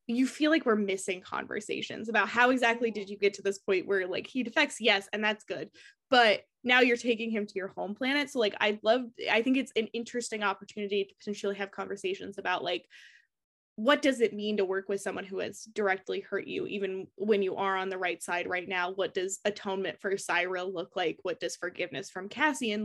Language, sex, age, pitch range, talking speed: English, female, 20-39, 195-255 Hz, 220 wpm